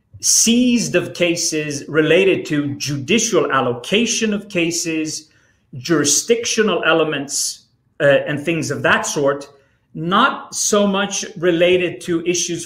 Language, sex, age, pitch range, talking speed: Danish, male, 30-49, 135-190 Hz, 110 wpm